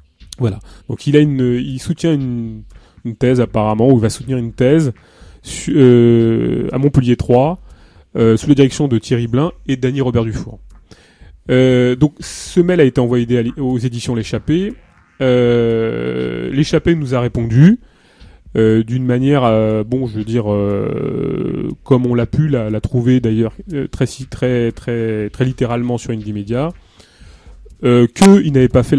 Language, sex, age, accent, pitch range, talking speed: French, male, 30-49, French, 110-135 Hz, 160 wpm